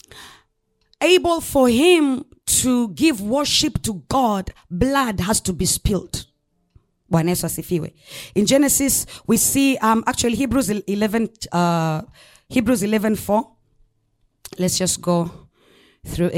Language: English